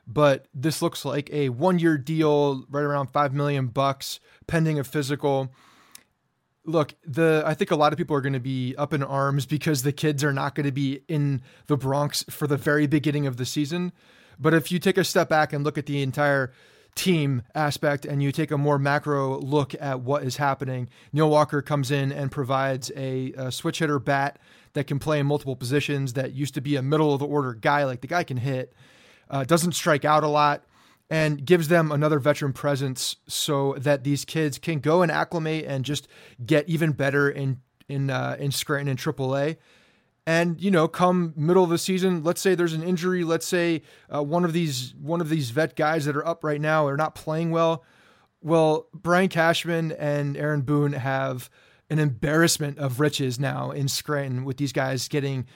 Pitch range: 140-160 Hz